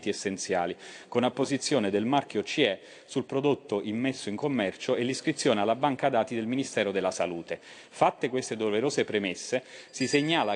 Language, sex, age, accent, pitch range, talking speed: Italian, male, 30-49, native, 105-135 Hz, 150 wpm